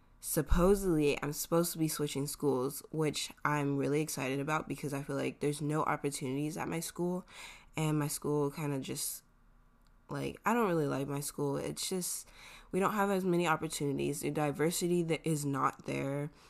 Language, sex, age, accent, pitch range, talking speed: English, female, 10-29, American, 140-170 Hz, 180 wpm